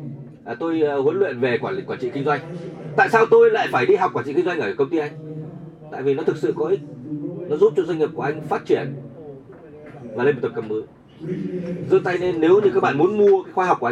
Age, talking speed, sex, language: 20-39, 265 wpm, male, Vietnamese